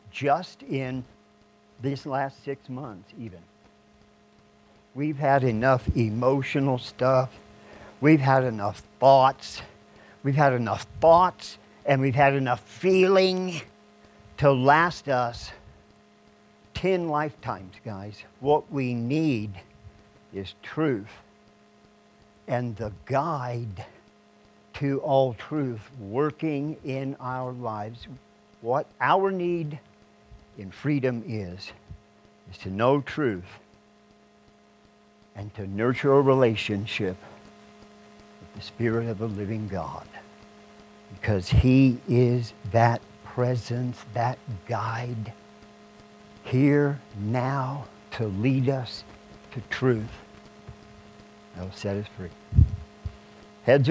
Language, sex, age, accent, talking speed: English, male, 50-69, American, 100 wpm